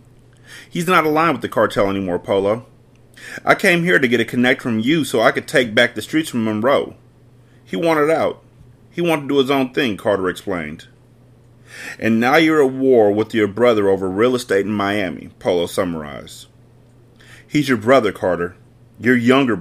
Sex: male